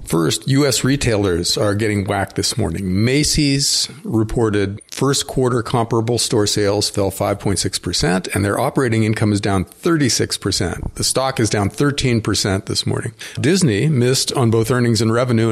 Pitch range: 100-125 Hz